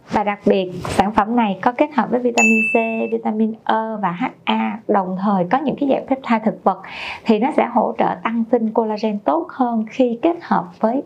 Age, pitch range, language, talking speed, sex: 20-39, 195-250 Hz, Vietnamese, 210 wpm, female